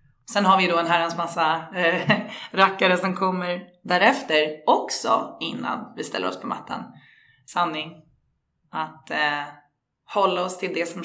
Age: 20-39